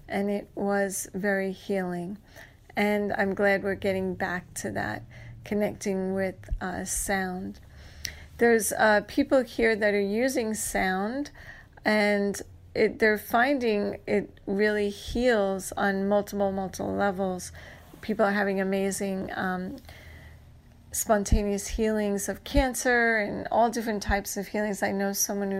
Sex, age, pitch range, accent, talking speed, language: female, 30-49, 200-235 Hz, American, 125 wpm, English